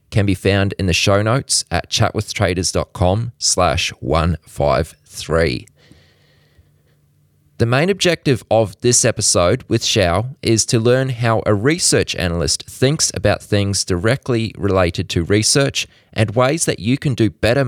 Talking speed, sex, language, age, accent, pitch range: 130 wpm, male, English, 20-39, Australian, 95-125 Hz